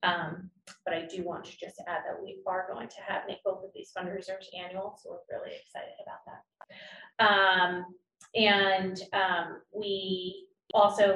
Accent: American